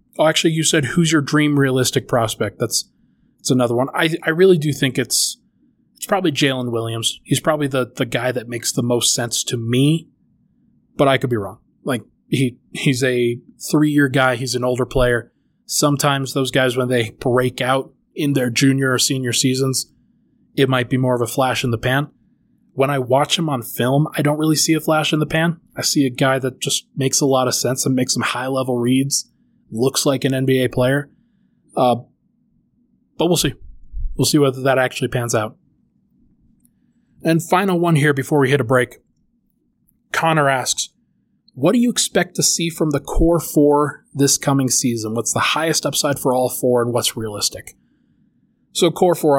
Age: 20-39